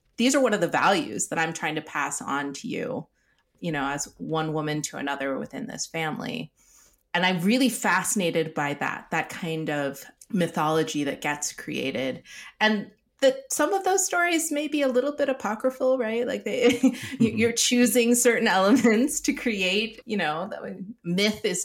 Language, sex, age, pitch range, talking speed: English, female, 30-49, 155-230 Hz, 175 wpm